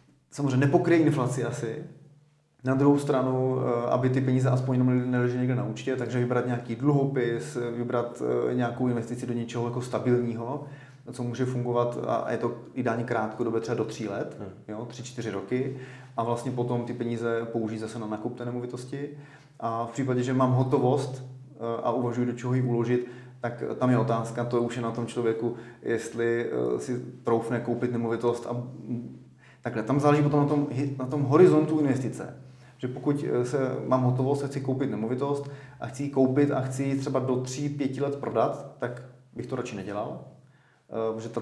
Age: 30-49